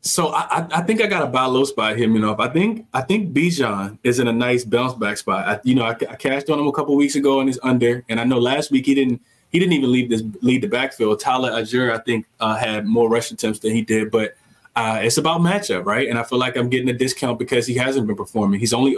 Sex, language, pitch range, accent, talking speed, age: male, English, 115-135 Hz, American, 280 wpm, 20-39